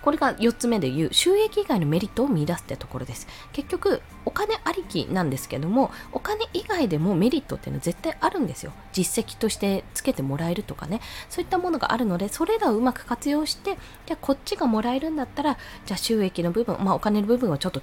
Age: 20-39